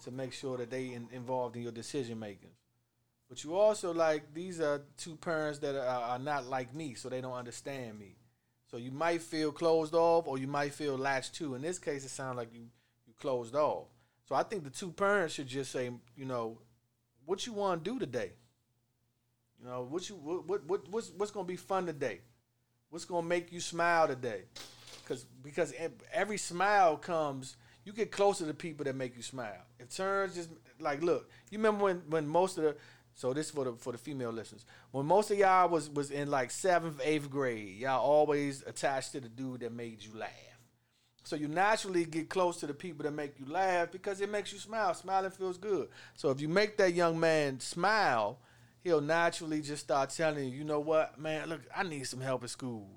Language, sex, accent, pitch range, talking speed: English, male, American, 125-170 Hz, 215 wpm